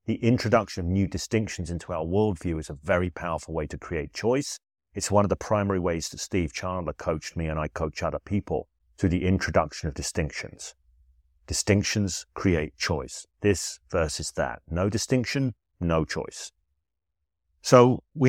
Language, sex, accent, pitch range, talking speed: English, male, British, 80-115 Hz, 160 wpm